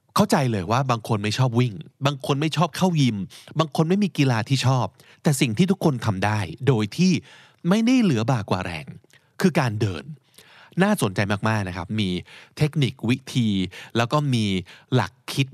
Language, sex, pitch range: Thai, male, 105-150 Hz